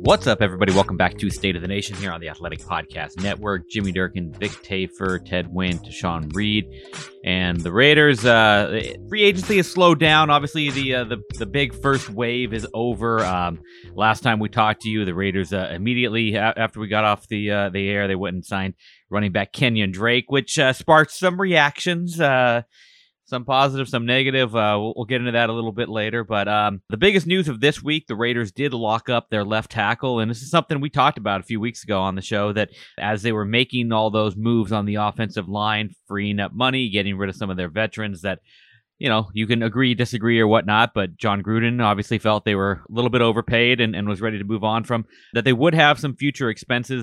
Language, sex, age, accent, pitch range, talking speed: English, male, 30-49, American, 100-125 Hz, 225 wpm